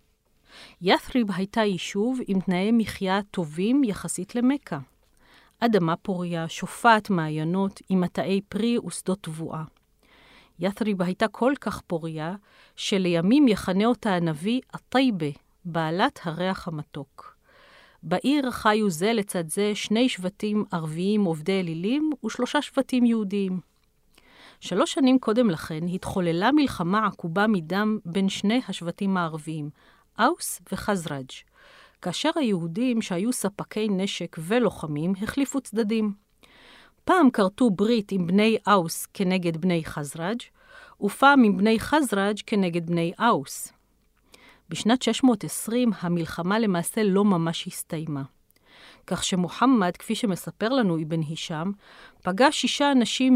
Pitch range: 175-230 Hz